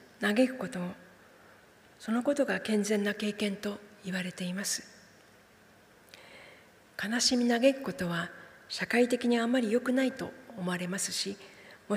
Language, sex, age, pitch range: Japanese, female, 40-59, 185-225 Hz